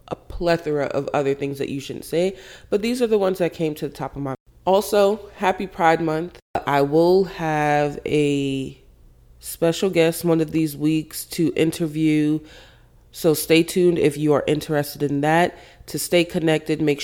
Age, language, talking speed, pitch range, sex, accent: 30-49, English, 175 wpm, 140-170 Hz, female, American